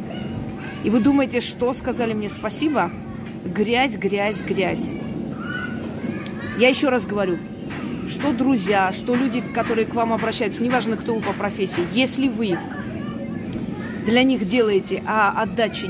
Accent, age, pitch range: native, 30-49, 205-245 Hz